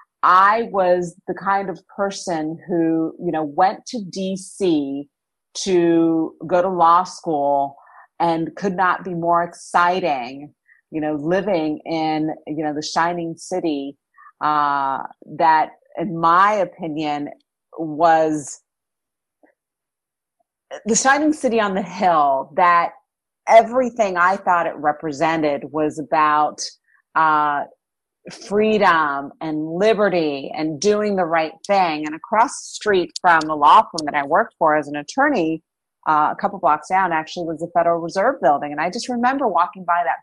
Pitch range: 155-195 Hz